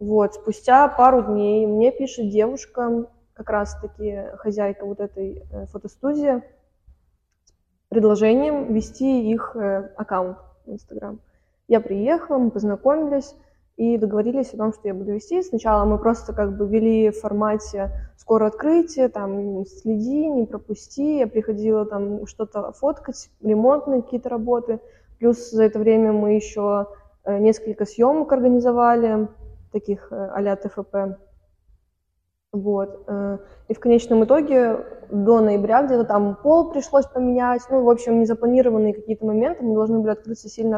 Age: 20-39